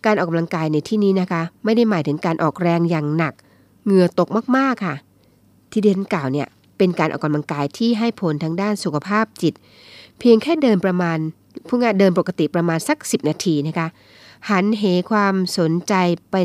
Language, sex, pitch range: Thai, female, 145-190 Hz